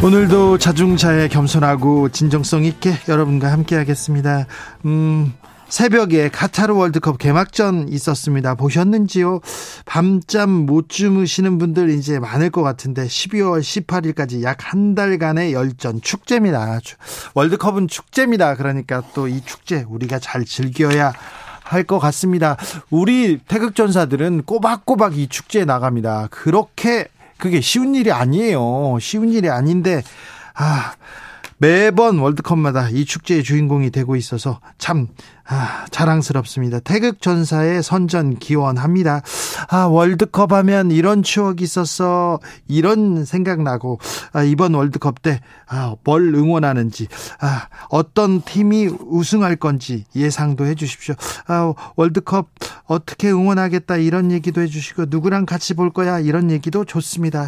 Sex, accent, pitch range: male, native, 145-185 Hz